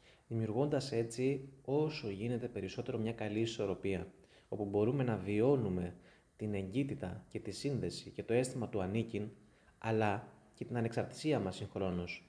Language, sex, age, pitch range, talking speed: Greek, male, 20-39, 100-140 Hz, 135 wpm